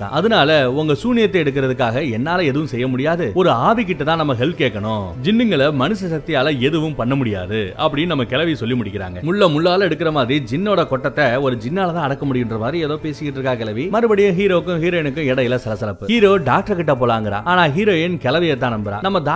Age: 30-49